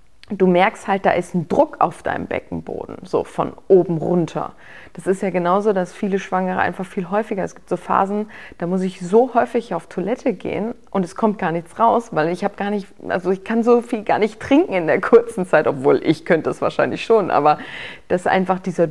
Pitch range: 170-215 Hz